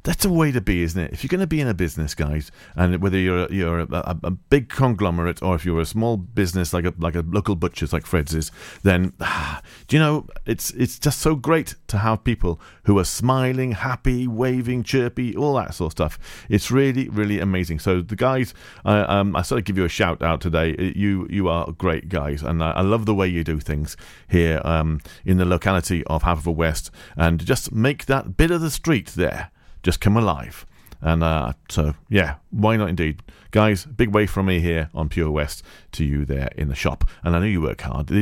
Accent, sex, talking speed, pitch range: British, male, 230 wpm, 80-115 Hz